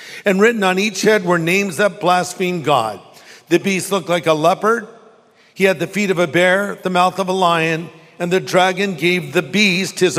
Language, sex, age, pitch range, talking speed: English, male, 50-69, 165-200 Hz, 205 wpm